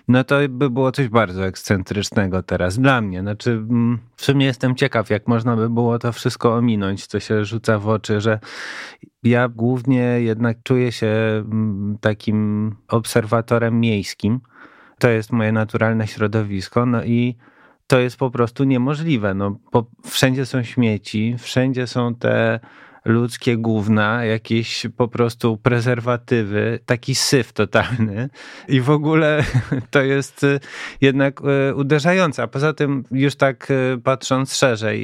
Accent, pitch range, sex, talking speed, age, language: native, 110-130 Hz, male, 135 wpm, 30-49, Polish